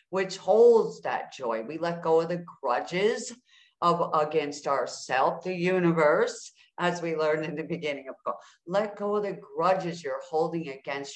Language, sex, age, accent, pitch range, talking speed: English, female, 50-69, American, 160-210 Hz, 165 wpm